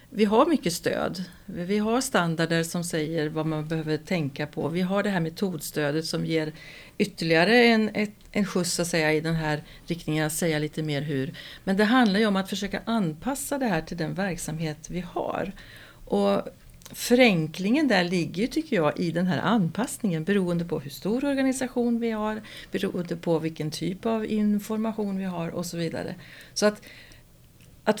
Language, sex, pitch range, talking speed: Swedish, female, 165-215 Hz, 175 wpm